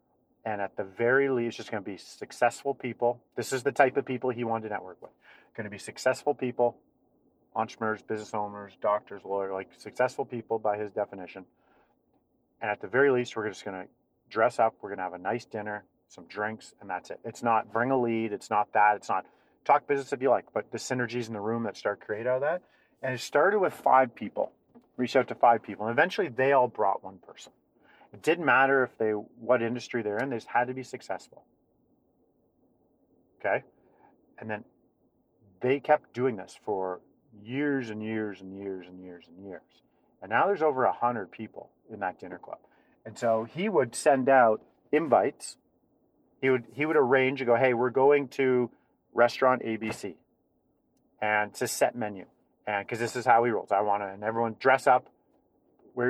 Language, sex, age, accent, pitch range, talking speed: English, male, 40-59, American, 105-130 Hz, 200 wpm